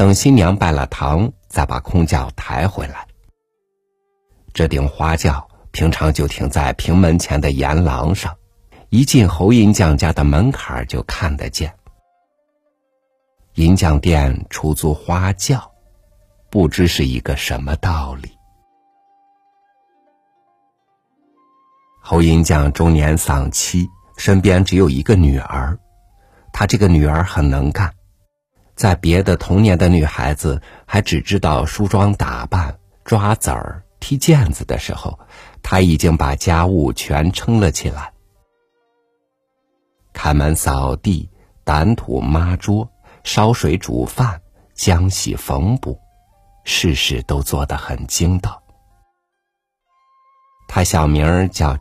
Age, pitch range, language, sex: 50-69, 80-105 Hz, Chinese, male